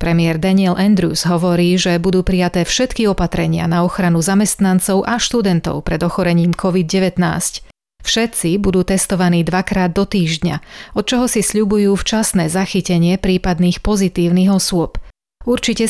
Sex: female